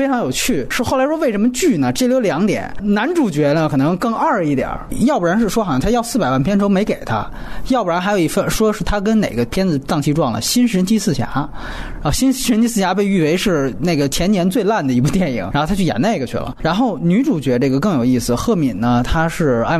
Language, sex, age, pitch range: Chinese, male, 20-39, 145-240 Hz